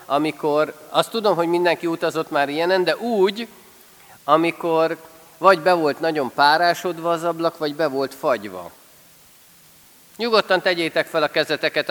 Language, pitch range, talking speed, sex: Hungarian, 135-190 Hz, 135 wpm, male